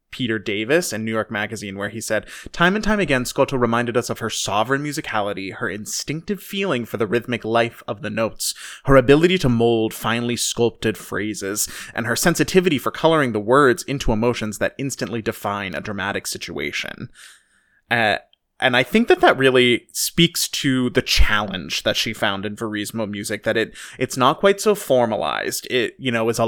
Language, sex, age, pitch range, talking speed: English, male, 20-39, 115-145 Hz, 185 wpm